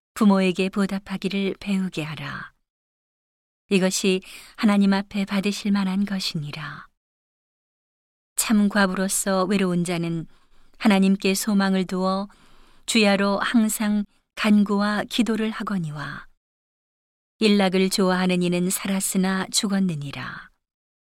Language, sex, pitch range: Korean, female, 180-205 Hz